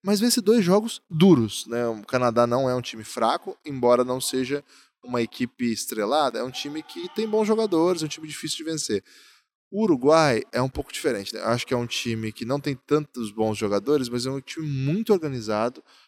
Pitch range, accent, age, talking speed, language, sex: 110-155 Hz, Brazilian, 10-29, 210 wpm, Portuguese, male